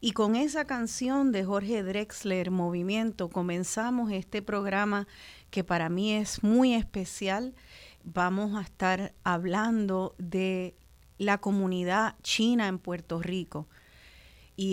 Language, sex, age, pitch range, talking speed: Spanish, female, 30-49, 185-235 Hz, 120 wpm